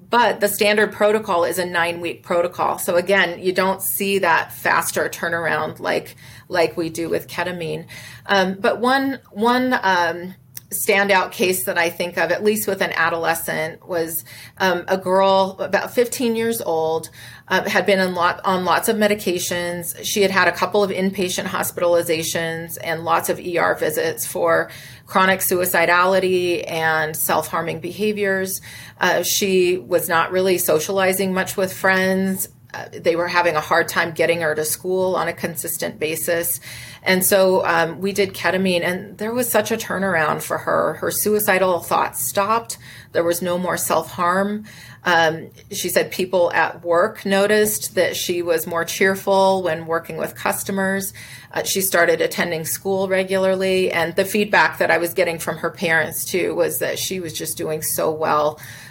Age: 30-49